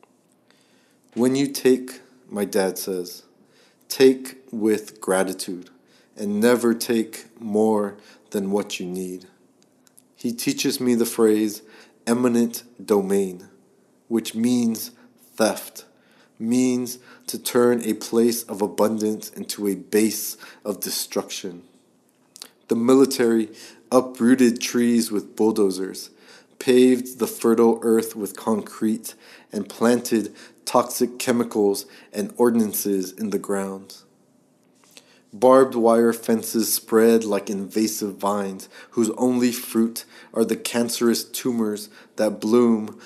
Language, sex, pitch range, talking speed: English, male, 105-120 Hz, 105 wpm